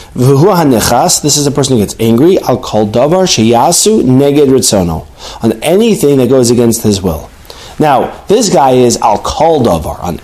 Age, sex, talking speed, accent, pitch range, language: 40-59, male, 150 wpm, American, 130-185 Hz, English